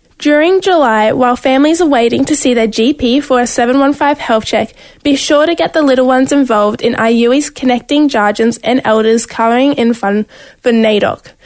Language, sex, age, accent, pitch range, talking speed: English, female, 10-29, Australian, 235-290 Hz, 180 wpm